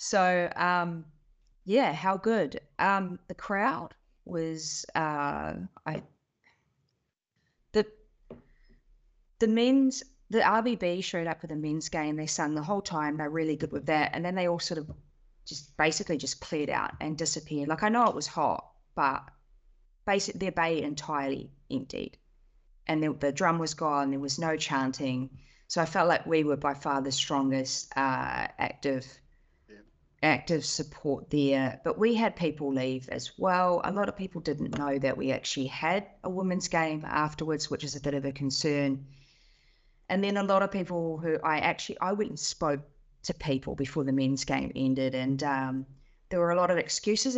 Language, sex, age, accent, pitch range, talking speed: English, female, 20-39, Australian, 140-180 Hz, 175 wpm